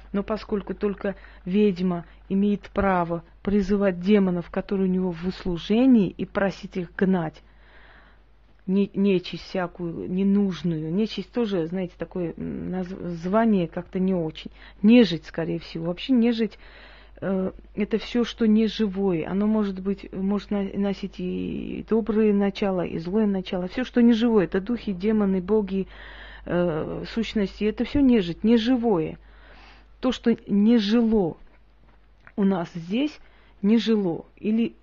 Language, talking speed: Russian, 125 wpm